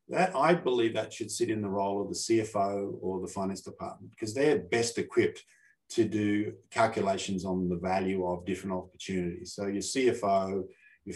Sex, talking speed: male, 175 wpm